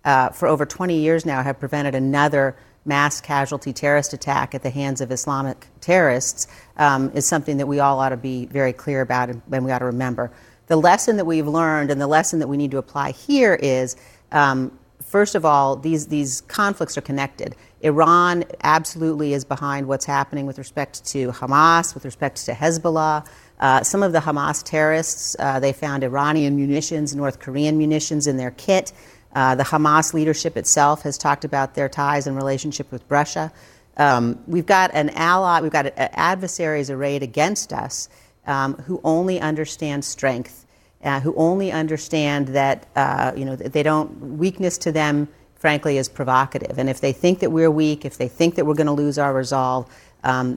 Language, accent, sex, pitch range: English, American, female, 135-160 Hz